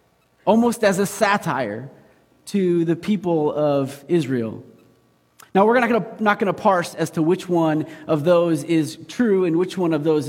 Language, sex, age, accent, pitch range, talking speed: English, male, 30-49, American, 140-200 Hz, 180 wpm